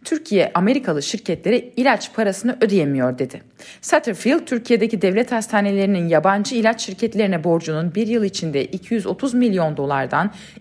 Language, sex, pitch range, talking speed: Turkish, female, 175-245 Hz, 120 wpm